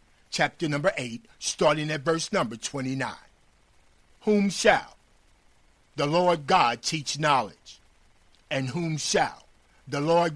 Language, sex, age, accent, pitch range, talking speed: English, male, 50-69, American, 115-165 Hz, 115 wpm